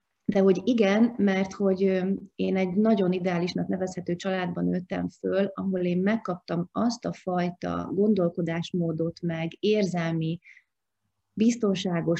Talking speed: 115 wpm